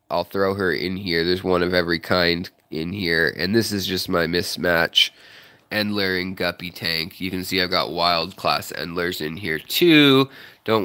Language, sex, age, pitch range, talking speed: English, male, 20-39, 95-125 Hz, 190 wpm